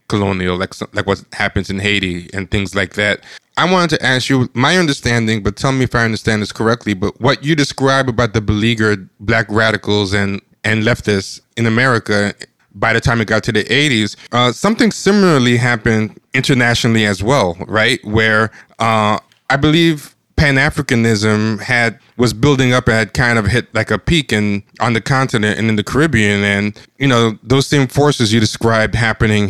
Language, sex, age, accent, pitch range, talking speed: English, male, 20-39, American, 105-120 Hz, 185 wpm